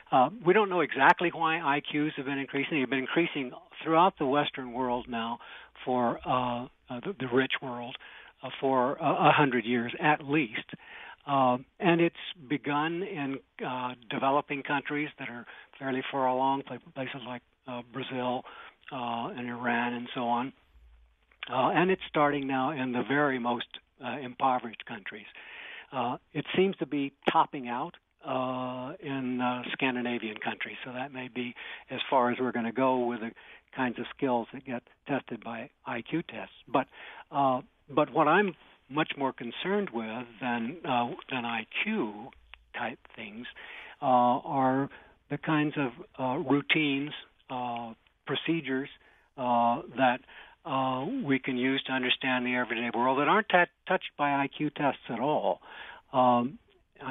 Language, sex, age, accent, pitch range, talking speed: English, male, 60-79, American, 120-145 Hz, 160 wpm